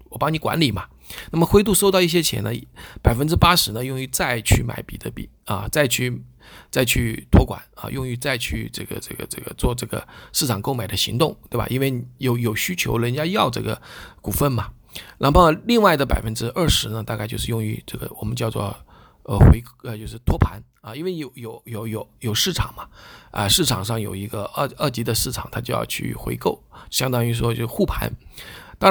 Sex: male